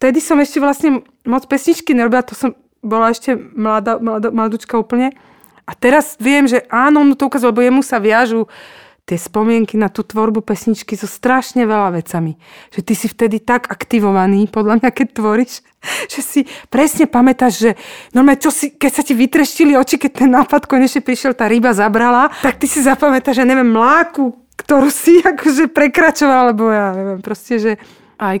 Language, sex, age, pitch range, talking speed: Slovak, female, 40-59, 185-260 Hz, 180 wpm